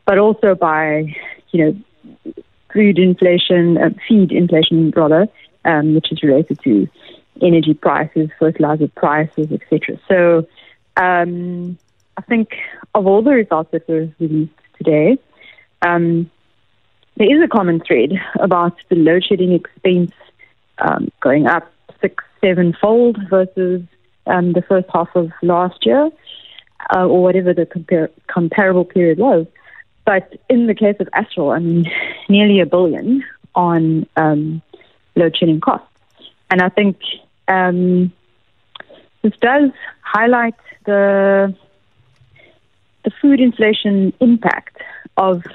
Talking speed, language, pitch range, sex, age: 125 wpm, English, 165-200 Hz, female, 30-49